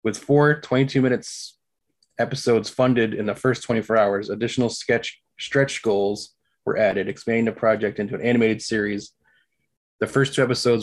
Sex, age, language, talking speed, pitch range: male, 20-39, English, 155 wpm, 100-130 Hz